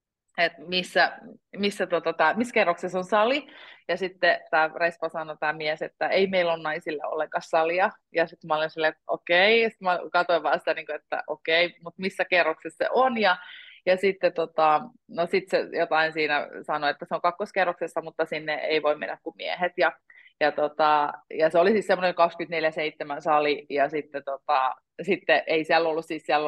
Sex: female